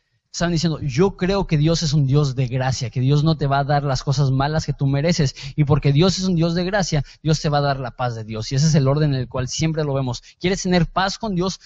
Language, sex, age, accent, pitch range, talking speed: Spanish, male, 20-39, Mexican, 135-170 Hz, 295 wpm